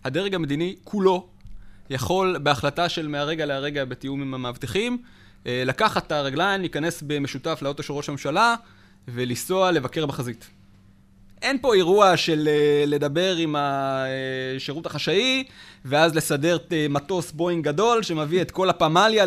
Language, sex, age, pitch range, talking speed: Hebrew, male, 20-39, 140-190 Hz, 125 wpm